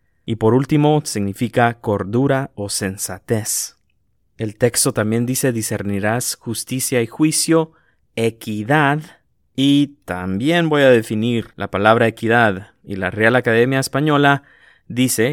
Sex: male